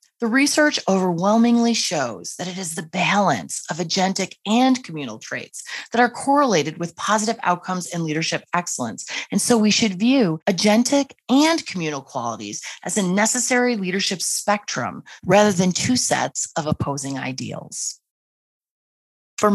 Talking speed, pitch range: 140 wpm, 145-200 Hz